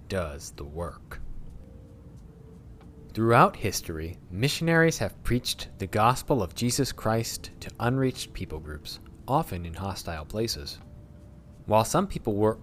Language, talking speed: English, 120 wpm